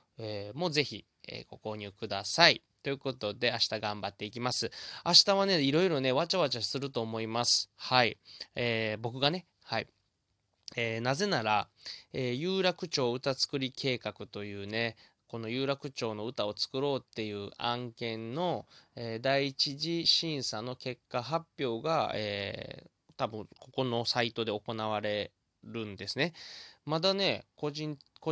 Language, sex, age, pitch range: Japanese, male, 20-39, 110-140 Hz